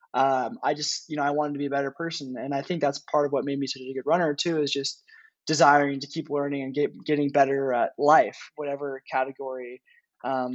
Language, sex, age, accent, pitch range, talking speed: English, male, 20-39, American, 140-160 Hz, 230 wpm